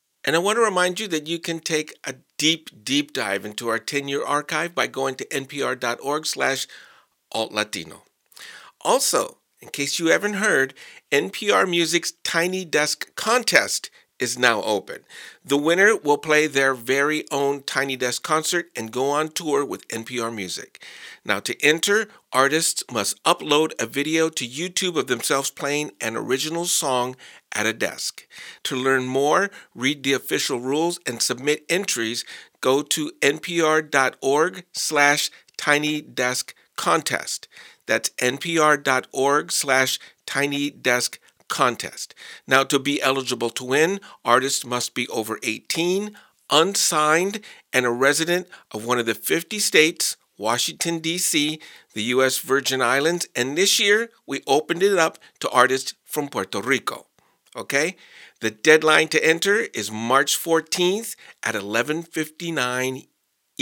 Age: 50-69